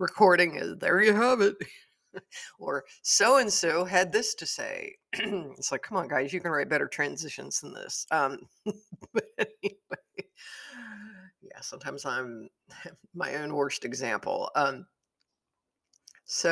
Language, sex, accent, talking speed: English, female, American, 140 wpm